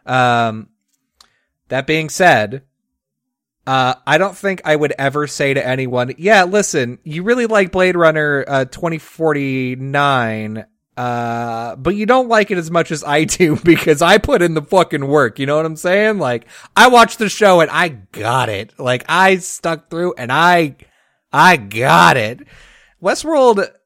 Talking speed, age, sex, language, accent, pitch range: 165 wpm, 30-49, male, English, American, 130-175 Hz